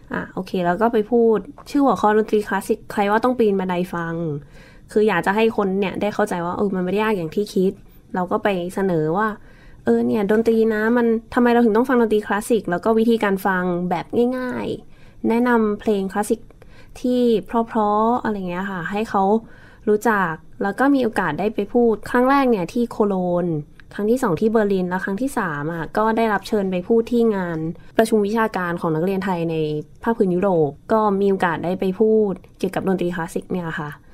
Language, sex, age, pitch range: Thai, female, 20-39, 180-230 Hz